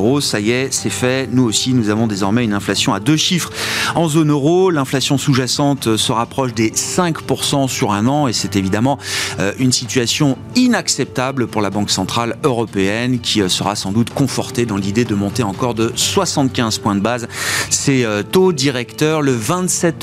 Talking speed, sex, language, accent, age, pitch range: 175 wpm, male, French, French, 40-59, 105-140 Hz